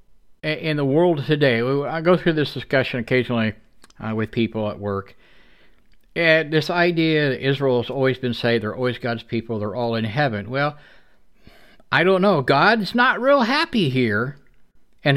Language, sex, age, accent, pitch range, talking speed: English, male, 60-79, American, 115-160 Hz, 165 wpm